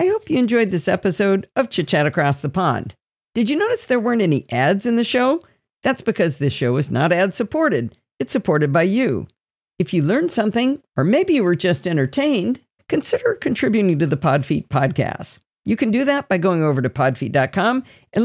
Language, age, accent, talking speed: English, 50-69, American, 195 wpm